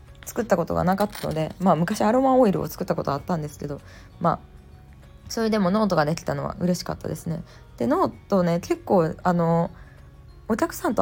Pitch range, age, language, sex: 155-215 Hz, 20-39, Japanese, female